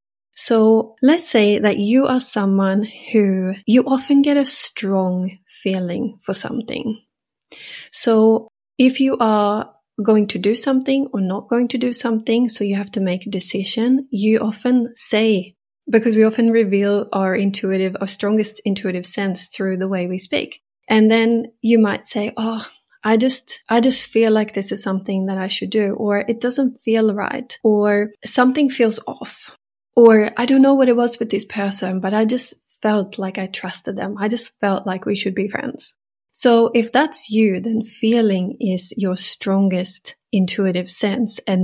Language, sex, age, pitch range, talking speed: English, female, 30-49, 195-240 Hz, 175 wpm